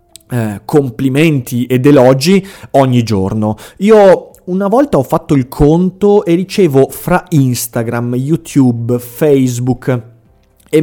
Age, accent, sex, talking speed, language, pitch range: 30-49, native, male, 110 wpm, Italian, 115-160 Hz